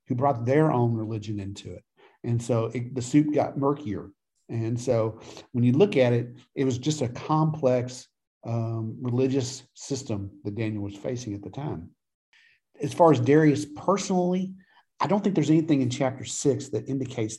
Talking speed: 175 wpm